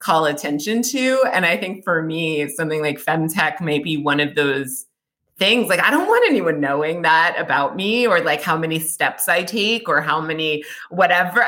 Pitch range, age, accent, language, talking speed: 145-195 Hz, 30-49, American, English, 195 wpm